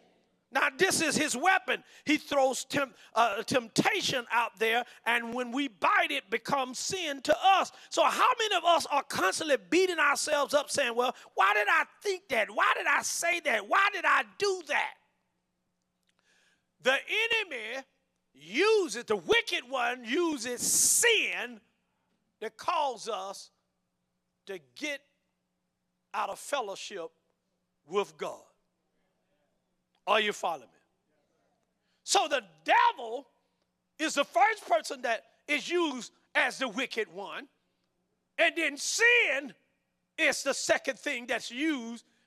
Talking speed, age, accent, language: 135 wpm, 40-59, American, English